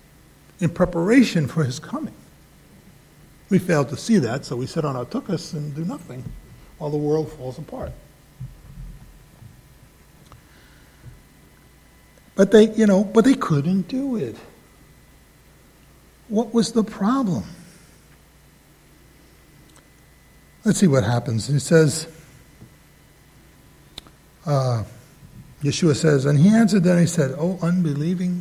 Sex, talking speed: male, 115 wpm